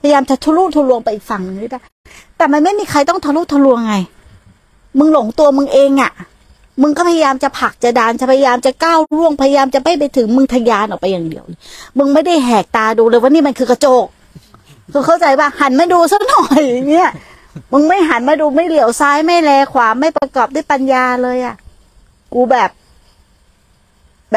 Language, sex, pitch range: Thai, female, 240-305 Hz